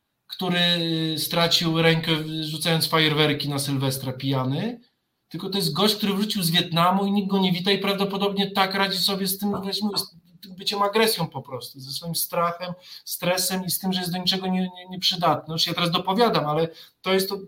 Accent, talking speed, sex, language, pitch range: native, 185 wpm, male, Polish, 160-195 Hz